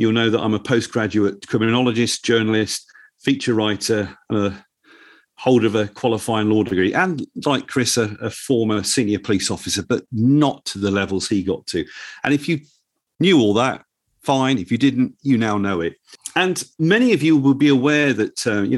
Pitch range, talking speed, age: 110-140 Hz, 190 wpm, 40-59